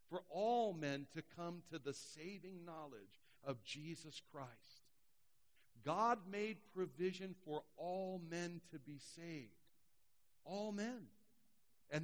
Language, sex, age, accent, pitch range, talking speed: English, male, 60-79, American, 130-200 Hz, 120 wpm